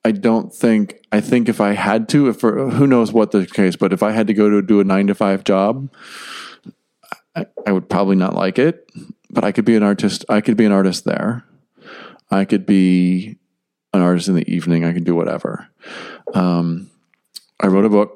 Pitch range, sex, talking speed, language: 95-115 Hz, male, 215 wpm, English